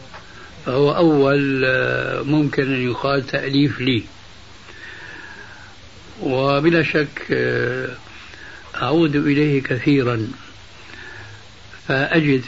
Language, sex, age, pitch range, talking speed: Arabic, male, 60-79, 115-145 Hz, 65 wpm